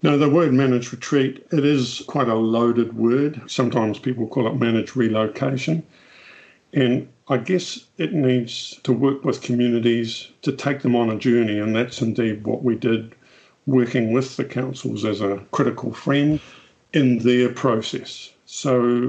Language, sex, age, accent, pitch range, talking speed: English, male, 50-69, British, 115-130 Hz, 155 wpm